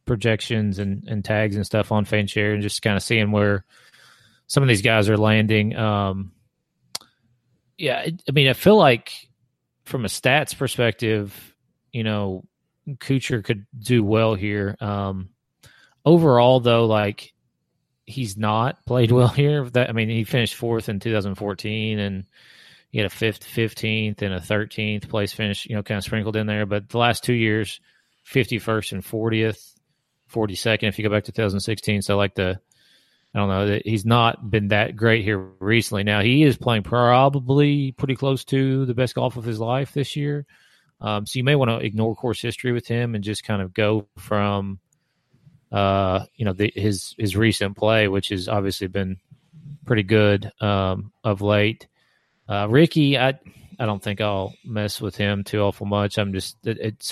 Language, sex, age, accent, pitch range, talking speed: English, male, 30-49, American, 105-125 Hz, 175 wpm